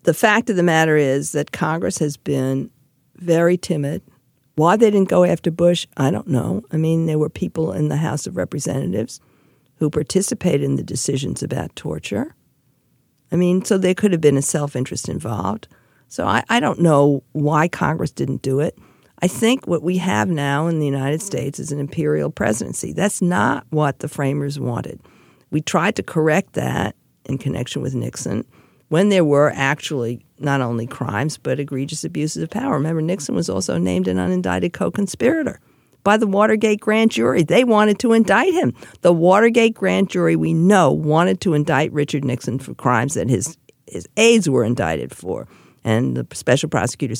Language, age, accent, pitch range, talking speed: English, 50-69, American, 140-190 Hz, 180 wpm